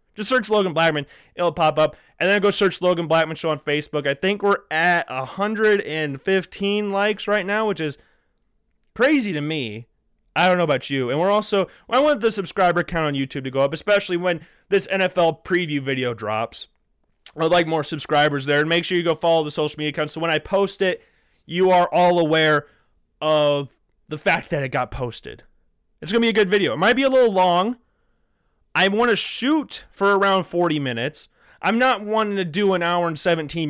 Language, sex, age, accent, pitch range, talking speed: English, male, 30-49, American, 150-205 Hz, 205 wpm